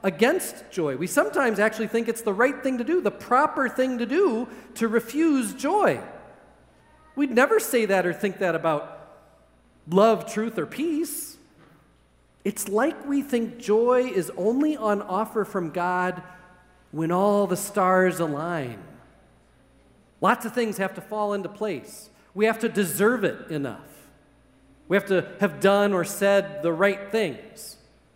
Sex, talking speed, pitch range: male, 155 wpm, 180-230 Hz